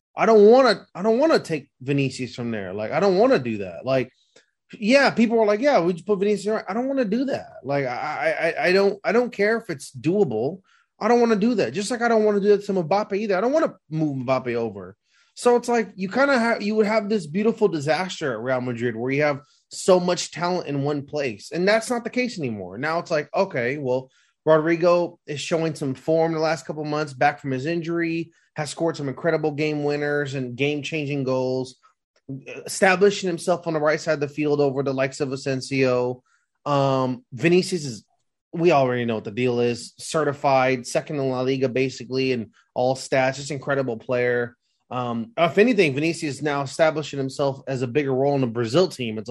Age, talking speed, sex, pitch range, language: 20-39, 225 wpm, male, 130-180 Hz, English